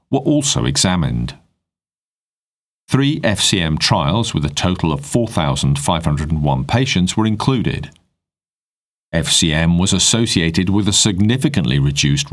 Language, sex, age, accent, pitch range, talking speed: English, male, 40-59, British, 80-115 Hz, 100 wpm